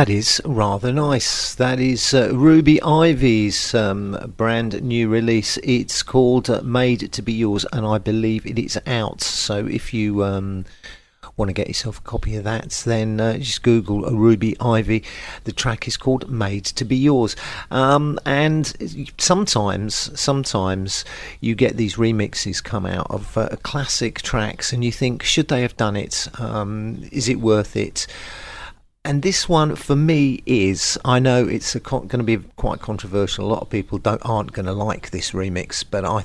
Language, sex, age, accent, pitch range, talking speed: English, male, 40-59, British, 105-130 Hz, 175 wpm